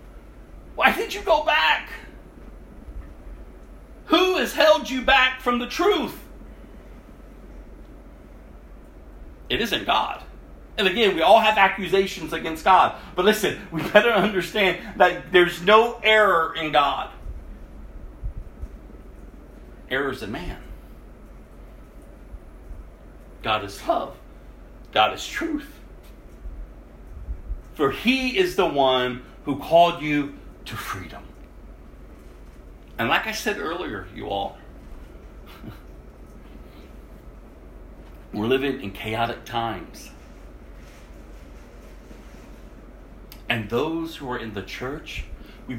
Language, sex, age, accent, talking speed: English, male, 40-59, American, 100 wpm